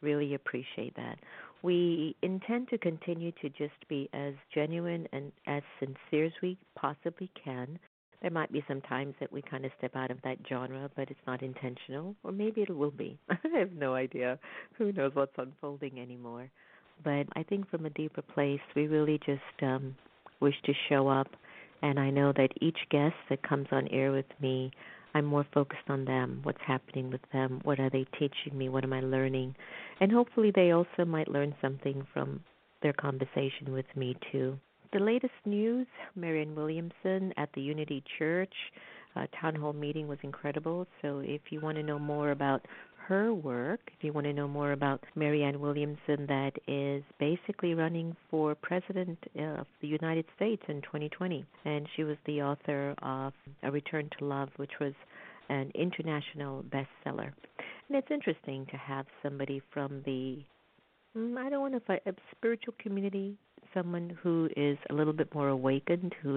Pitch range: 135-165 Hz